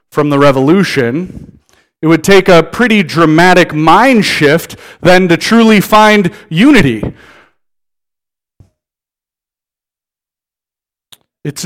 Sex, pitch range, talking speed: male, 140-175 Hz, 85 wpm